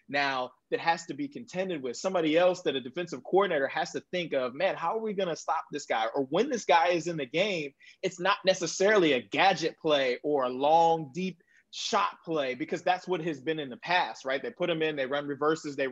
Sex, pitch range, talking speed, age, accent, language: male, 145-175 Hz, 240 wpm, 20-39, American, English